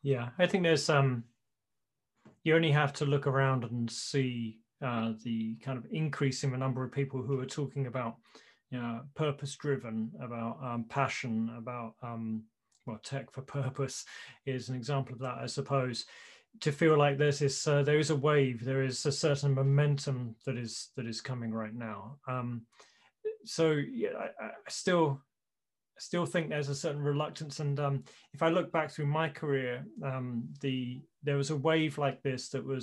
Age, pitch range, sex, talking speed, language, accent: 30-49, 125-150 Hz, male, 185 wpm, English, British